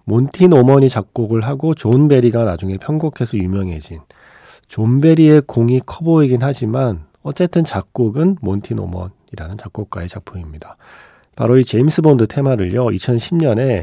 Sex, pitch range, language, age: male, 95-135 Hz, Korean, 40-59